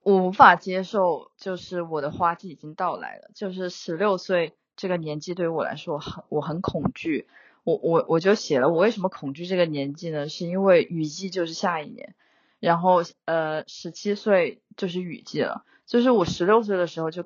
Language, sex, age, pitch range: Chinese, female, 20-39, 160-200 Hz